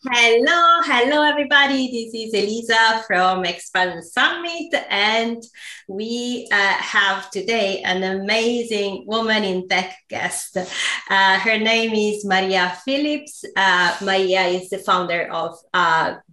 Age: 20-39